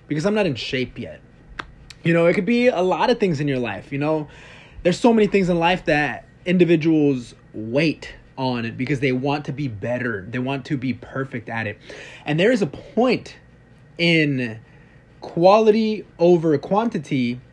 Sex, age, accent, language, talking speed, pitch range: male, 20-39, American, English, 180 wpm, 125-165 Hz